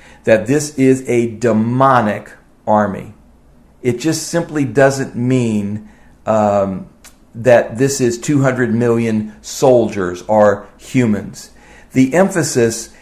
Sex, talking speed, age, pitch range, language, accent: male, 100 wpm, 50-69, 115-150 Hz, English, American